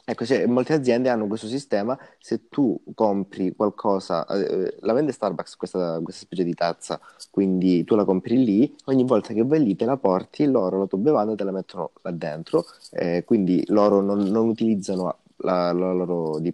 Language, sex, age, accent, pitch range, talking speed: Italian, male, 20-39, native, 90-105 Hz, 185 wpm